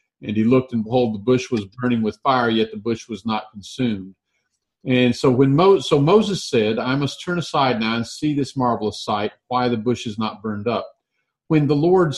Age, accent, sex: 50-69, American, male